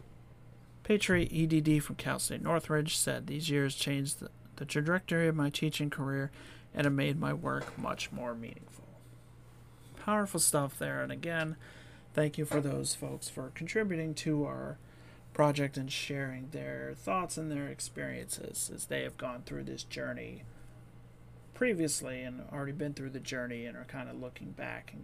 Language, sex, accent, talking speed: English, male, American, 160 wpm